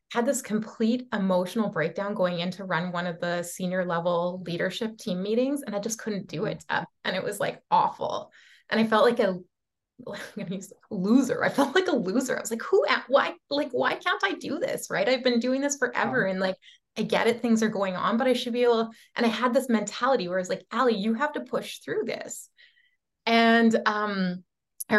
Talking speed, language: 225 wpm, English